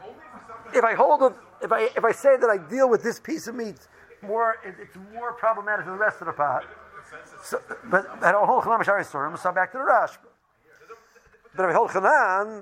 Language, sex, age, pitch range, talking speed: English, male, 50-69, 175-225 Hz, 220 wpm